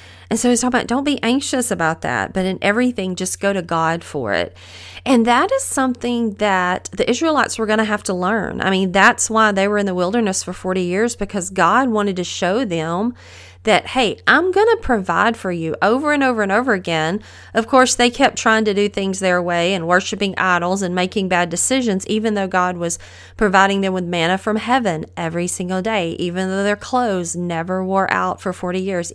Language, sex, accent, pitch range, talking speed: English, female, American, 185-235 Hz, 215 wpm